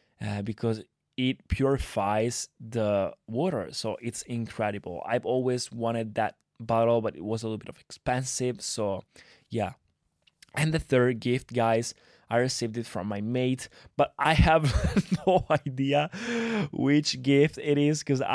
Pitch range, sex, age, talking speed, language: 110-130 Hz, male, 20-39, 145 wpm, Italian